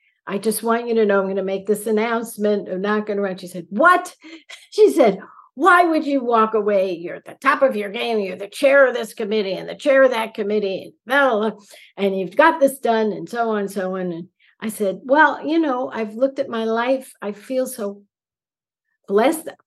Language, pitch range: English, 200-260 Hz